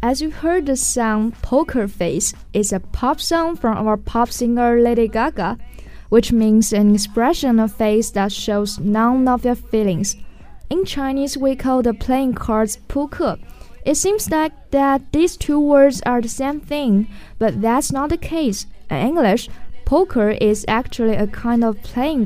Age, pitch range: 10-29, 215-285 Hz